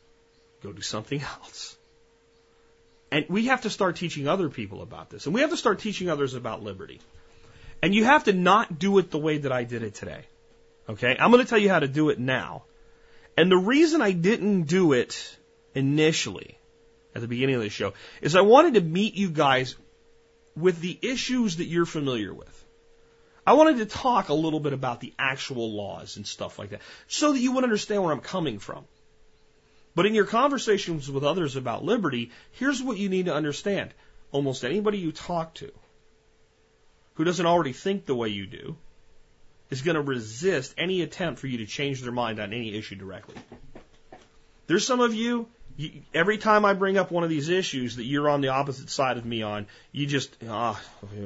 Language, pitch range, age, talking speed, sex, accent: English, 120-195 Hz, 30-49, 200 wpm, male, American